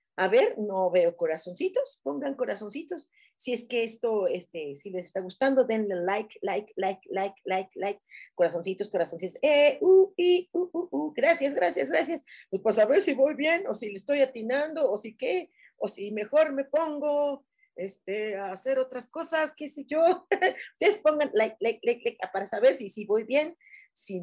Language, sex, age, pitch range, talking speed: Spanish, female, 40-59, 190-315 Hz, 185 wpm